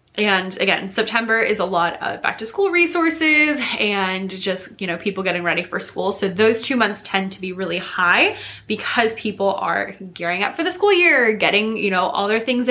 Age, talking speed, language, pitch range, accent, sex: 20-39, 210 wpm, English, 190-250 Hz, American, female